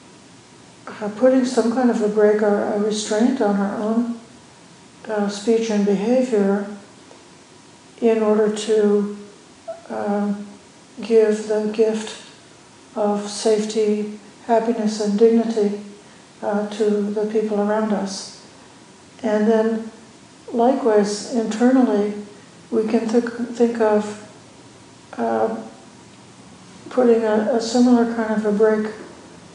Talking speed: 105 wpm